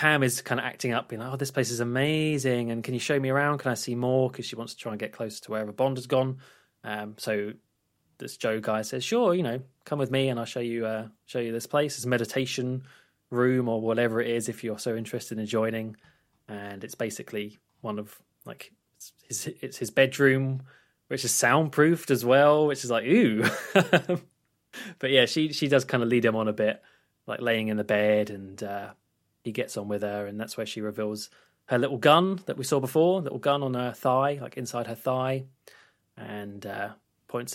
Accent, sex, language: British, male, English